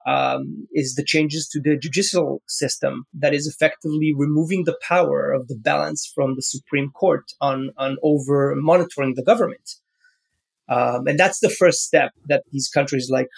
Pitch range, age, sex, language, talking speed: 140-170 Hz, 30-49, male, English, 160 wpm